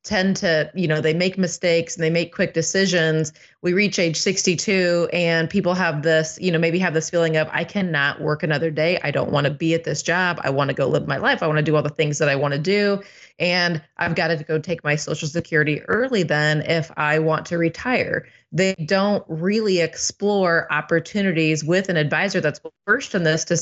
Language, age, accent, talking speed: English, 30-49, American, 225 wpm